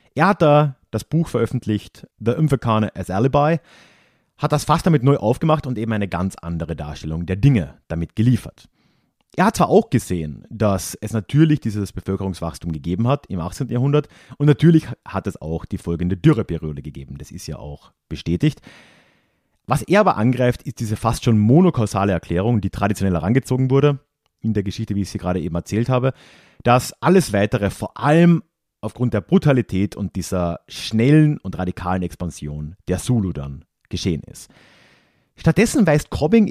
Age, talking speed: 30-49, 165 wpm